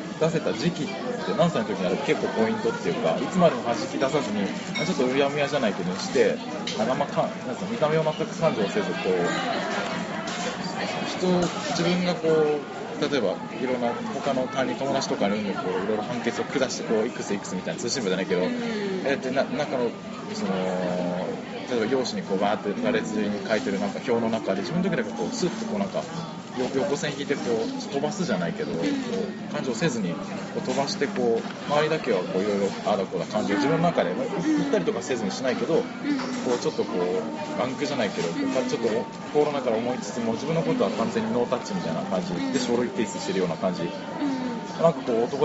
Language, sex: Japanese, male